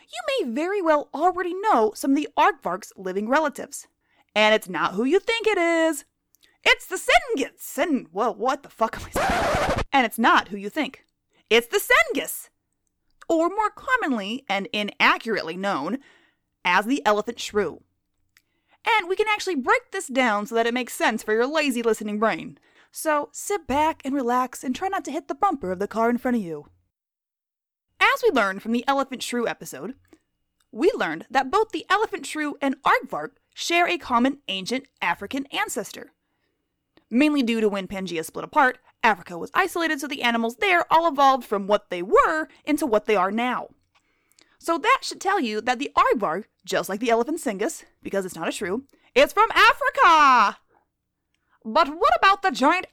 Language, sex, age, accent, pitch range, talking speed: English, female, 20-39, American, 220-350 Hz, 180 wpm